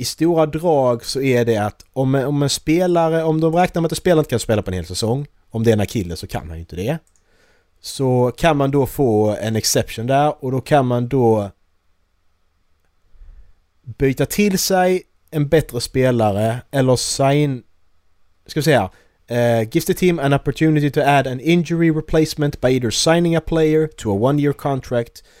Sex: male